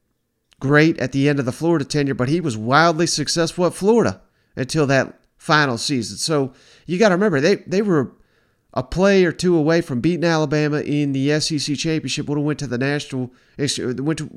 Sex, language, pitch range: male, English, 125-155 Hz